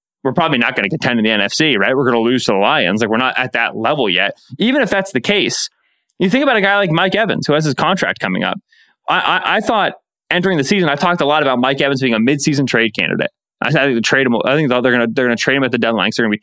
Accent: American